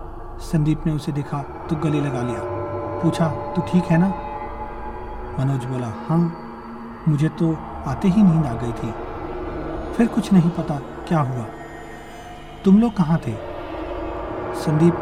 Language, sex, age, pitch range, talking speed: Hindi, male, 40-59, 120-170 Hz, 145 wpm